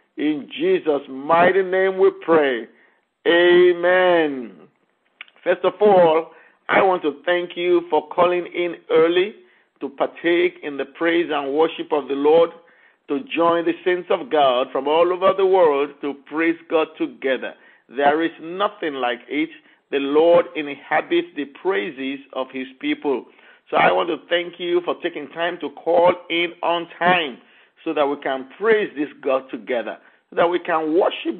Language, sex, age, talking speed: English, male, 50-69, 160 wpm